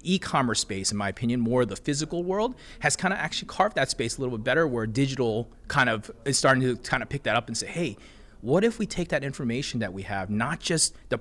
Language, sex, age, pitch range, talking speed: English, male, 30-49, 120-155 Hz, 250 wpm